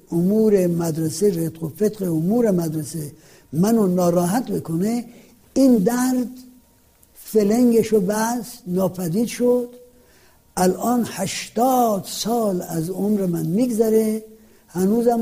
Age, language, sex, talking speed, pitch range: 60-79, Persian, male, 90 wpm, 175-230 Hz